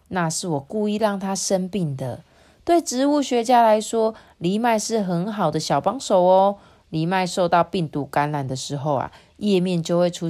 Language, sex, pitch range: Chinese, female, 155-220 Hz